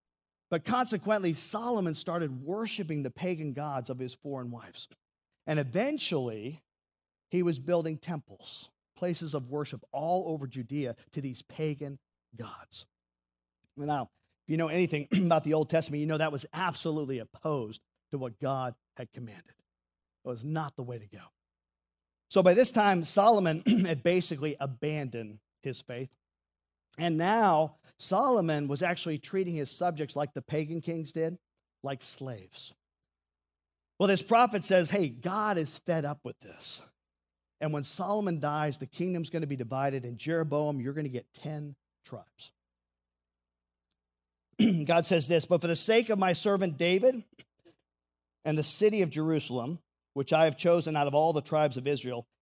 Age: 40-59